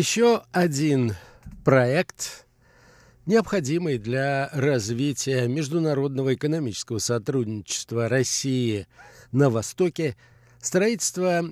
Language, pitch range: Russian, 120-150 Hz